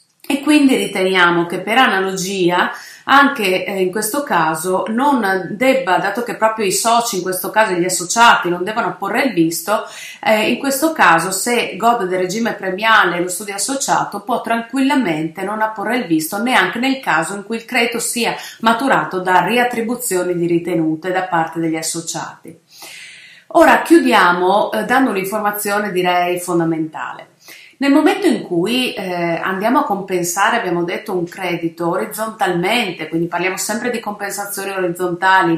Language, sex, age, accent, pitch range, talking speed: Italian, female, 30-49, native, 180-230 Hz, 145 wpm